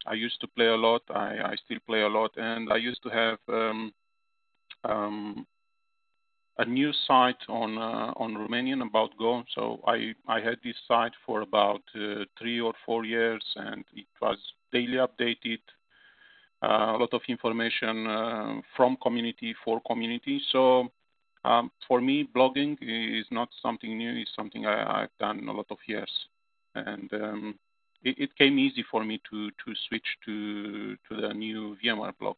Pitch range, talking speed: 110-150 Hz, 165 wpm